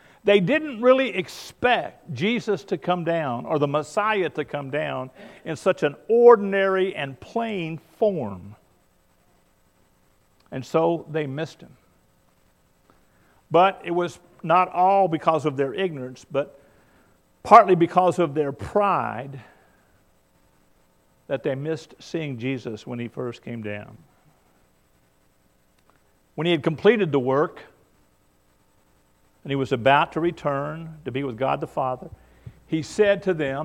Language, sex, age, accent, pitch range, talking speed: English, male, 50-69, American, 120-175 Hz, 130 wpm